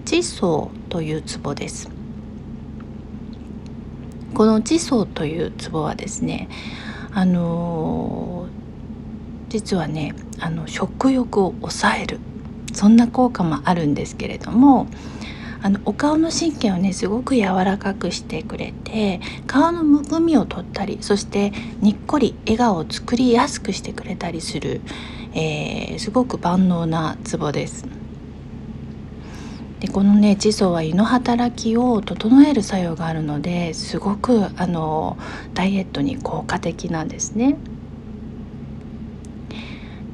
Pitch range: 180-250 Hz